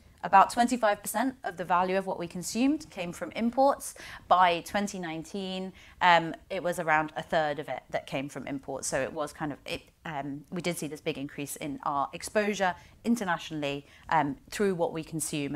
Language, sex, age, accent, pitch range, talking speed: English, female, 30-49, British, 155-205 Hz, 180 wpm